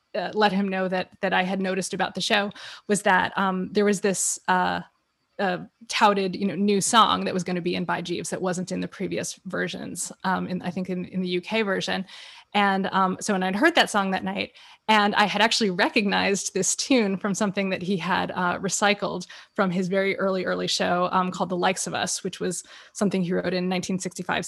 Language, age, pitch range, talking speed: English, 20-39, 185-230 Hz, 225 wpm